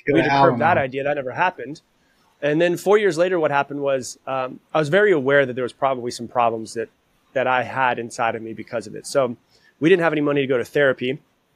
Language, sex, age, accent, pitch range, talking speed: English, male, 30-49, American, 125-150 Hz, 235 wpm